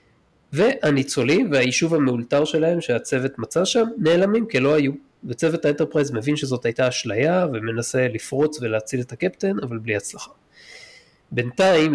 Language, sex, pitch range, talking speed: Hebrew, male, 120-150 Hz, 125 wpm